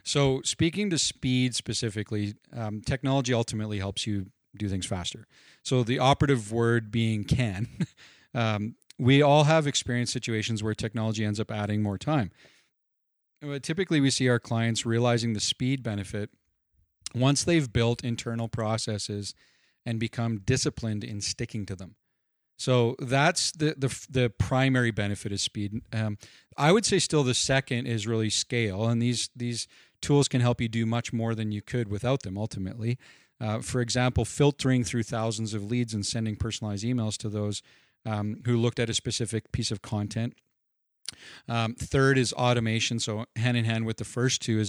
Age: 40-59